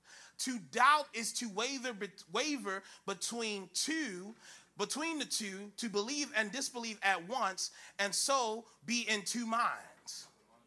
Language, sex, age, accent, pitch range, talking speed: English, male, 30-49, American, 210-270 Hz, 130 wpm